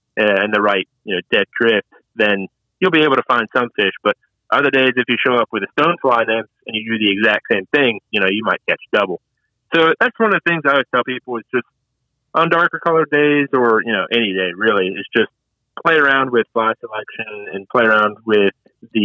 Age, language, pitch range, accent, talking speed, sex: 30-49, English, 110-145 Hz, American, 235 wpm, male